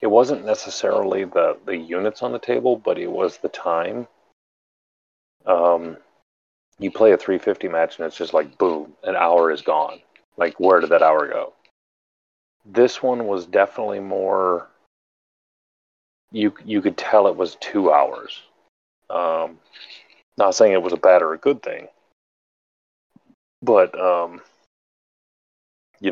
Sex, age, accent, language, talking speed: male, 40-59, American, English, 140 wpm